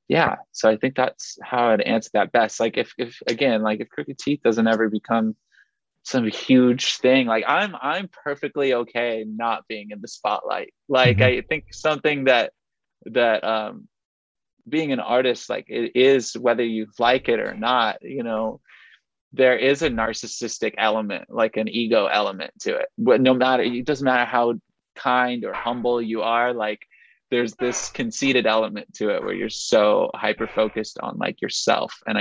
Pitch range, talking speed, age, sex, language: 105-130 Hz, 175 wpm, 20-39, male, English